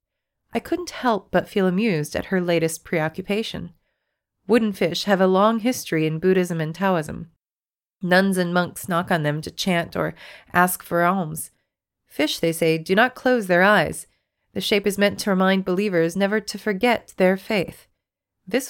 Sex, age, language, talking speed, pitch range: female, 30-49, English, 170 wpm, 165-210 Hz